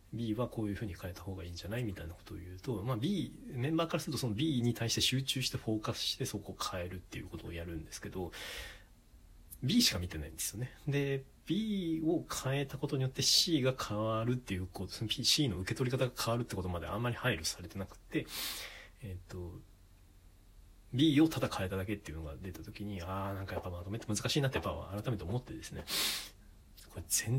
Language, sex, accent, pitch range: Japanese, male, native, 95-120 Hz